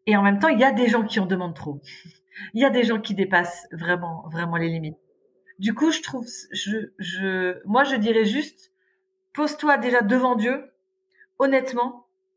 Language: French